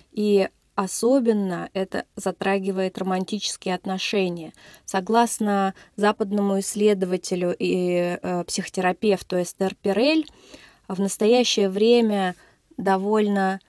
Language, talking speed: Russian, 75 wpm